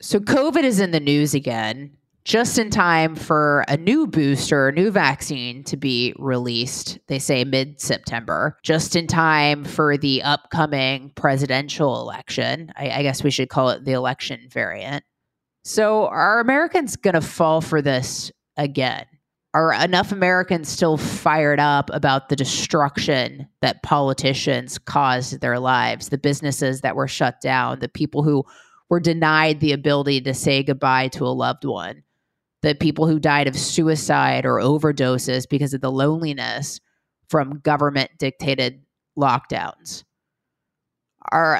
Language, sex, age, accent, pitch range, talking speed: English, female, 20-39, American, 135-165 Hz, 145 wpm